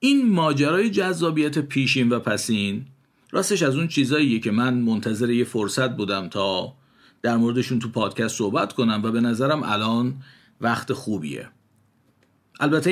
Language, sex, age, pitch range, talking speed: Persian, male, 50-69, 115-145 Hz, 140 wpm